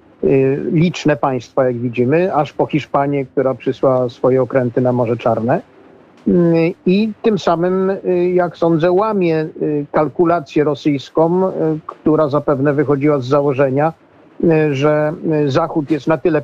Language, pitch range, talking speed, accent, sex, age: Polish, 135-155 Hz, 115 wpm, native, male, 50-69